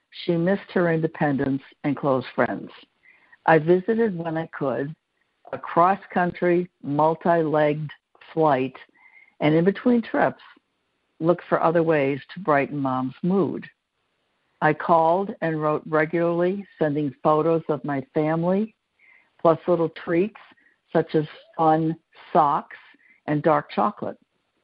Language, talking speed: English, 120 wpm